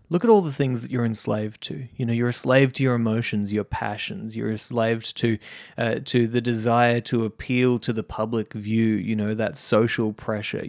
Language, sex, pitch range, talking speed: English, male, 105-125 Hz, 215 wpm